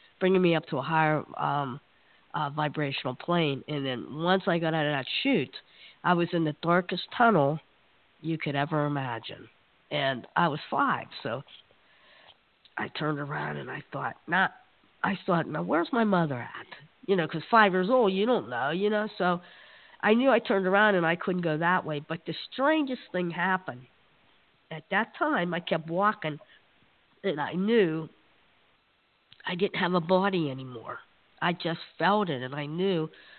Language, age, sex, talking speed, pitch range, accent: English, 50-69, female, 175 wpm, 155-205 Hz, American